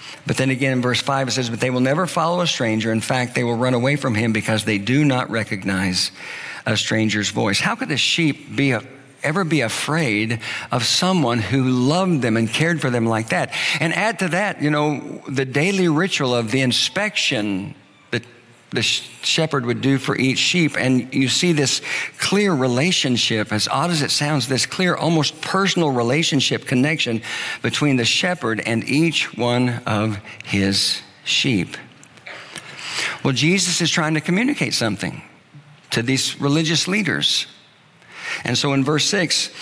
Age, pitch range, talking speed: 50-69, 120-160 Hz, 170 wpm